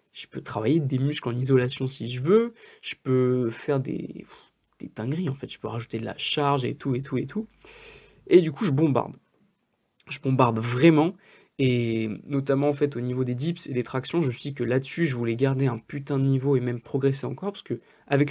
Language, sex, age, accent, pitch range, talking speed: French, male, 20-39, French, 125-150 Hz, 225 wpm